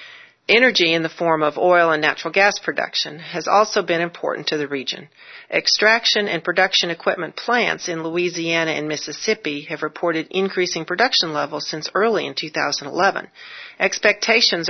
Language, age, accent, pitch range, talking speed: English, 40-59, American, 155-185 Hz, 145 wpm